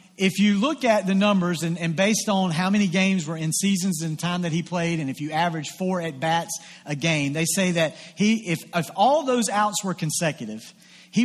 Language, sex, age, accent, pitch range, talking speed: English, male, 40-59, American, 165-205 Hz, 220 wpm